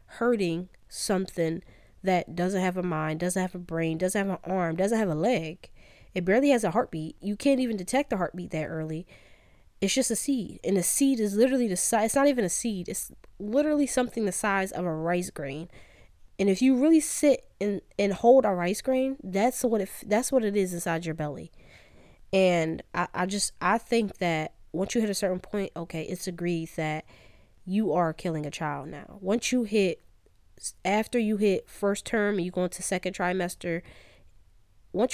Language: English